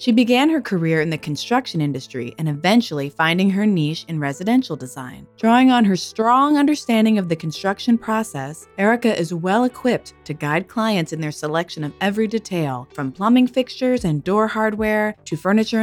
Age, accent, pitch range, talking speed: 20-39, American, 150-225 Hz, 170 wpm